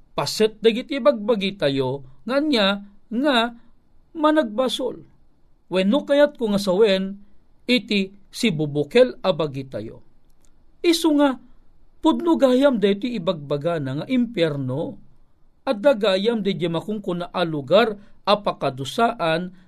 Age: 50-69